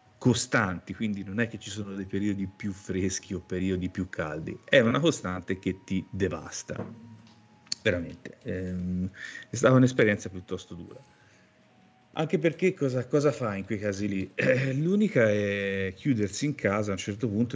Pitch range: 95-115 Hz